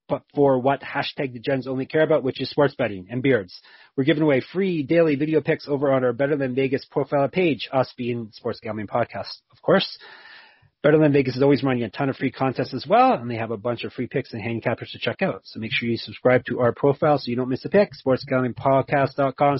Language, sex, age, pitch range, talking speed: English, male, 30-49, 125-145 Hz, 240 wpm